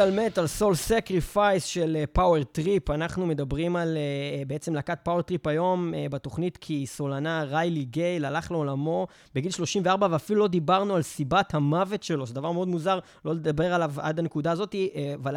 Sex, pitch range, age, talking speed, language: male, 150-190 Hz, 20-39, 175 wpm, Hebrew